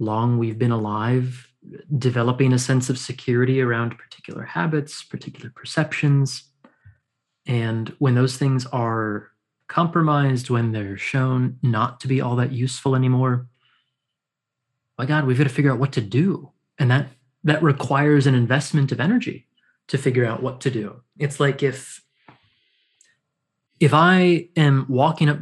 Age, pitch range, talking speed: 30-49, 125-150 Hz, 145 wpm